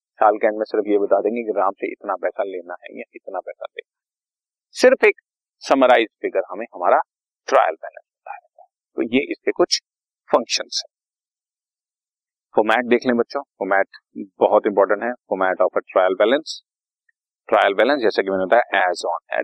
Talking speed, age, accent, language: 115 wpm, 30-49, native, Hindi